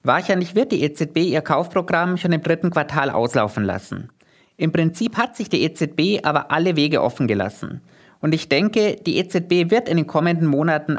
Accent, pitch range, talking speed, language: German, 145-190 Hz, 180 wpm, German